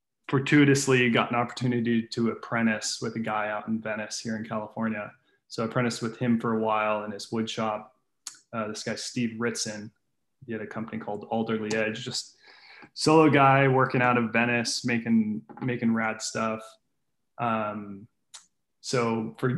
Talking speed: 160 wpm